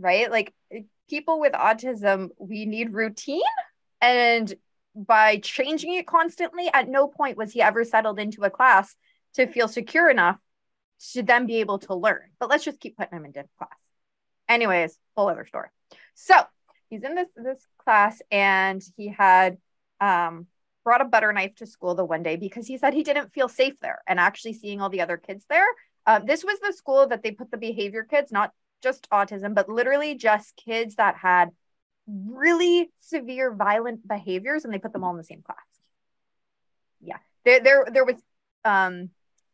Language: English